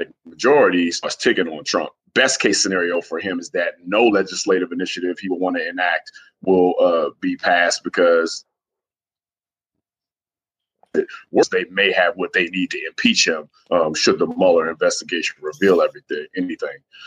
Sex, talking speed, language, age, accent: male, 150 wpm, English, 30-49, American